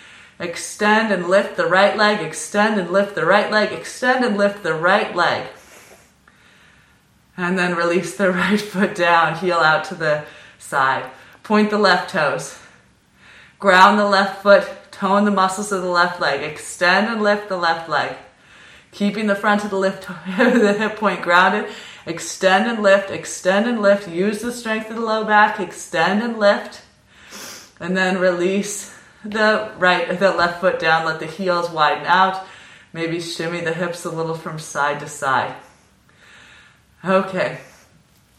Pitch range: 175-215 Hz